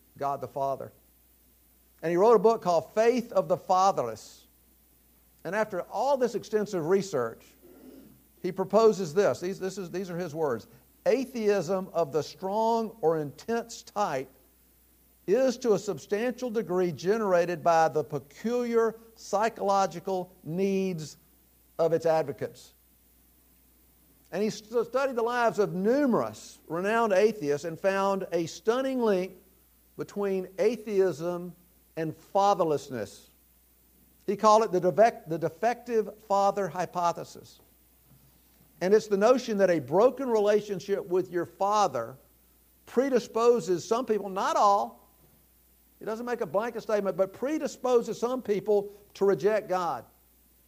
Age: 50-69